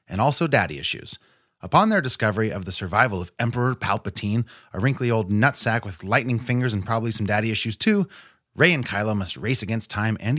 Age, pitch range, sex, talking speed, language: 30-49, 95-125 Hz, male, 195 wpm, English